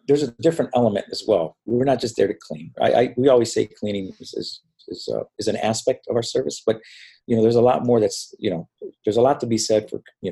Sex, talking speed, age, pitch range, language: male, 270 wpm, 50-69, 95-120 Hz, English